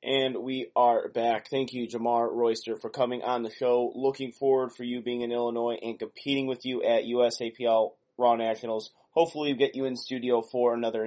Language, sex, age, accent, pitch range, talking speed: English, male, 20-39, American, 110-130 Hz, 195 wpm